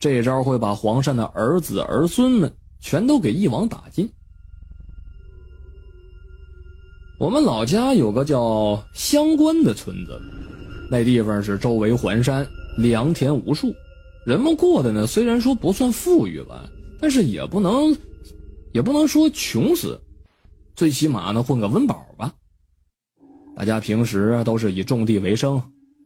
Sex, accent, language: male, native, Chinese